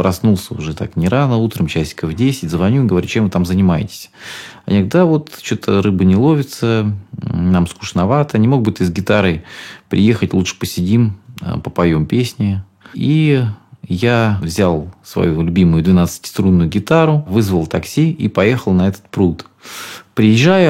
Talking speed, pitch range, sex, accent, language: 150 wpm, 90-120 Hz, male, native, Russian